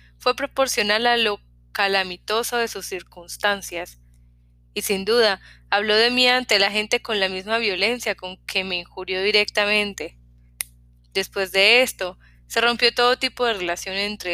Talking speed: 150 wpm